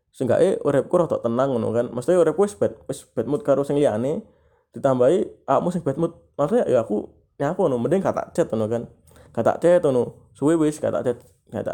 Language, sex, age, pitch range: Indonesian, male, 20-39, 120-175 Hz